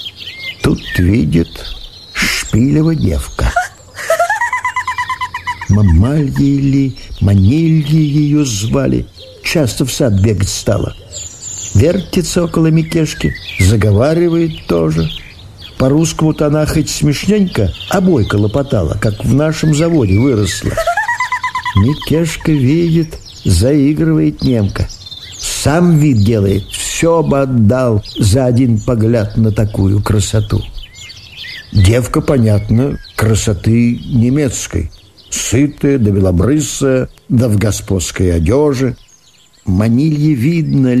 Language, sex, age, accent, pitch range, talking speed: Russian, male, 50-69, native, 100-150 Hz, 85 wpm